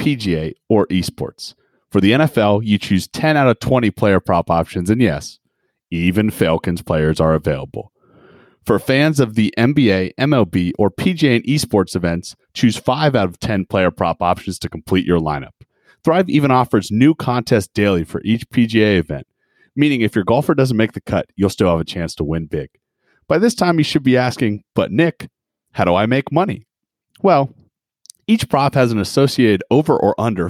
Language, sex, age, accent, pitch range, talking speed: English, male, 30-49, American, 90-130 Hz, 185 wpm